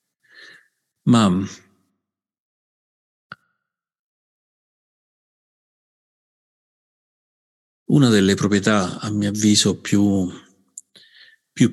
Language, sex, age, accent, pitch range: Italian, male, 50-69, native, 90-105 Hz